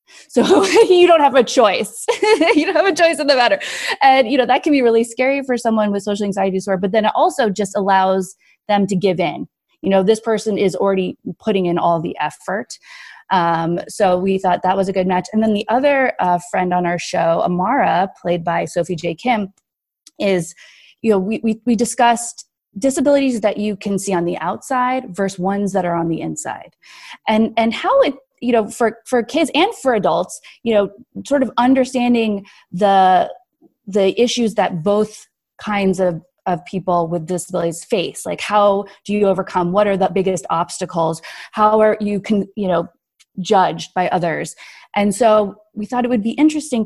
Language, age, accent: English, 20-39, American